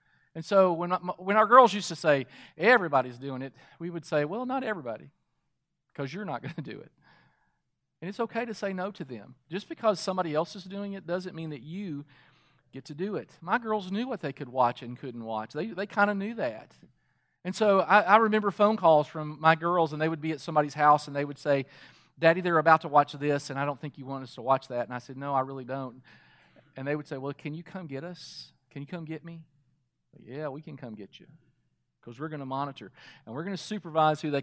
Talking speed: 245 wpm